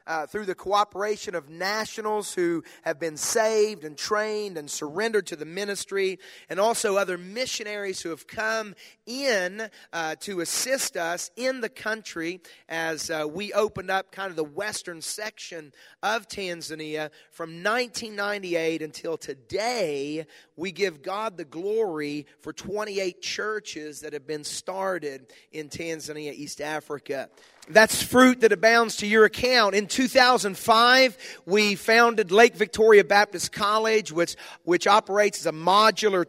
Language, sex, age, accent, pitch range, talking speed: English, male, 30-49, American, 165-215 Hz, 140 wpm